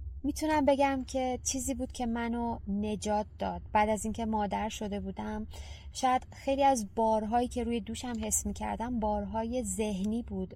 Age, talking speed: 20-39, 155 wpm